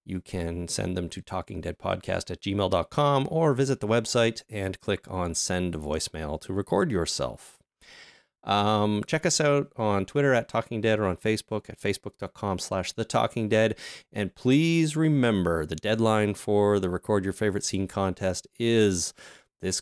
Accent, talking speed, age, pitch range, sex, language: American, 150 wpm, 30-49, 90-115 Hz, male, English